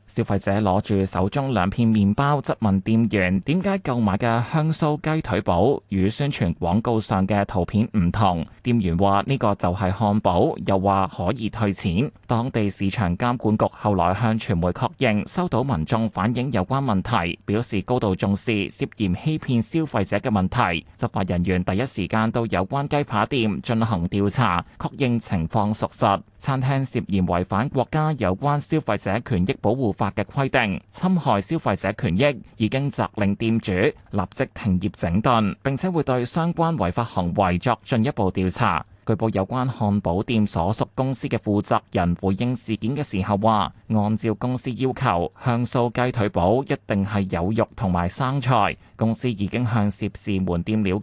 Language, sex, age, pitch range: Chinese, male, 20-39, 95-125 Hz